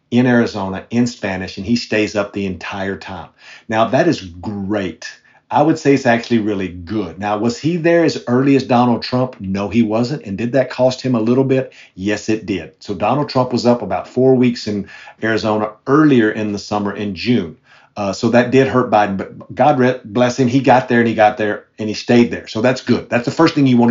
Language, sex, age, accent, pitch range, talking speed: English, male, 50-69, American, 105-135 Hz, 230 wpm